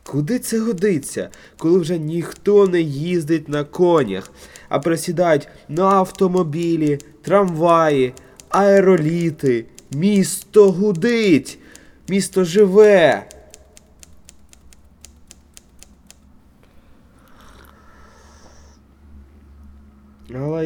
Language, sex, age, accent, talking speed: Ukrainian, male, 20-39, native, 60 wpm